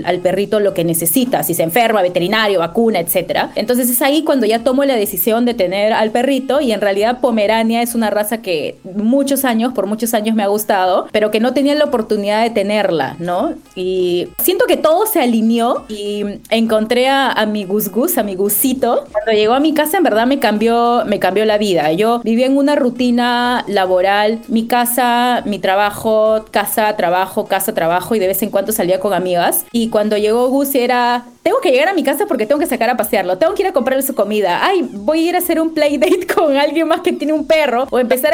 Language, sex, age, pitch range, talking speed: Spanish, female, 30-49, 215-275 Hz, 215 wpm